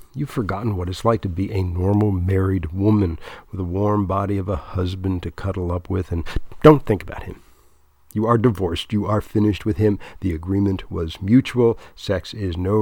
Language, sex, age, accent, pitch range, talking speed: English, male, 50-69, American, 90-115 Hz, 195 wpm